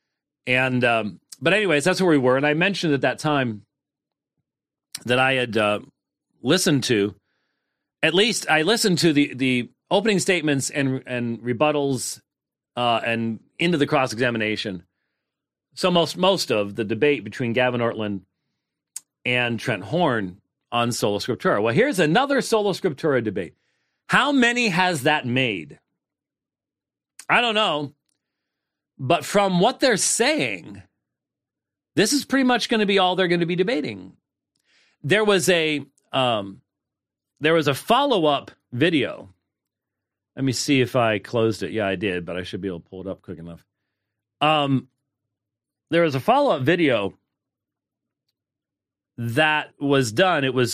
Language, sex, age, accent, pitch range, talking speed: English, male, 40-59, American, 110-160 Hz, 150 wpm